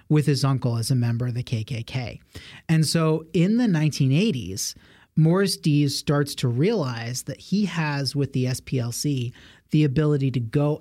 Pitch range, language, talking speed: 125-155 Hz, English, 160 wpm